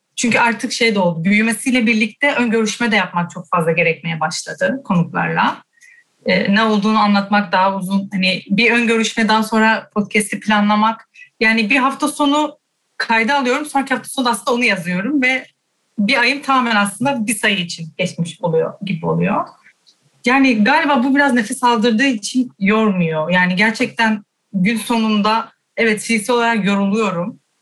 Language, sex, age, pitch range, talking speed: Turkish, female, 30-49, 195-240 Hz, 150 wpm